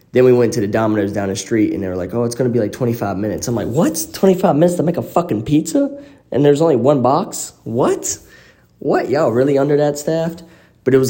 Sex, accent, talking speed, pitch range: male, American, 250 wpm, 90-115 Hz